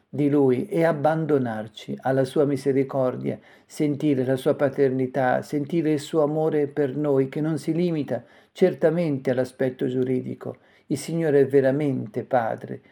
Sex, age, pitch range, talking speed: male, 50-69, 130-155 Hz, 135 wpm